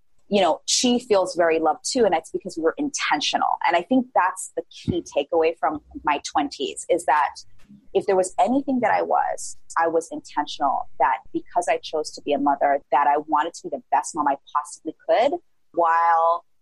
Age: 30-49